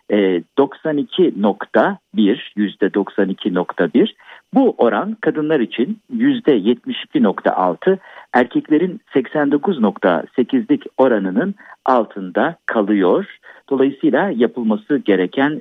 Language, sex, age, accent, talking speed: Turkish, male, 50-69, native, 60 wpm